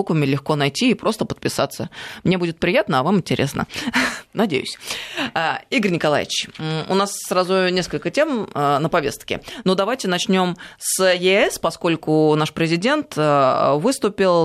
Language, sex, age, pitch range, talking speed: Russian, female, 20-39, 145-185 Hz, 125 wpm